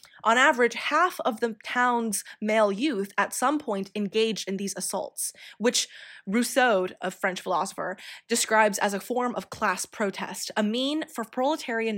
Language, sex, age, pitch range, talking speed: English, female, 20-39, 200-255 Hz, 155 wpm